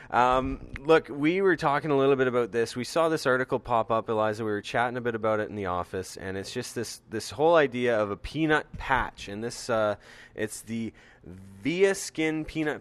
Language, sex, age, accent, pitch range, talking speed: English, male, 20-39, American, 105-135 Hz, 215 wpm